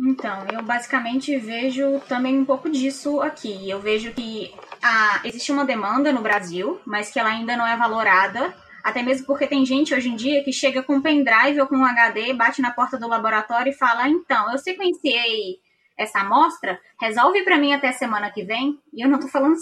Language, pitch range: Portuguese, 225-280 Hz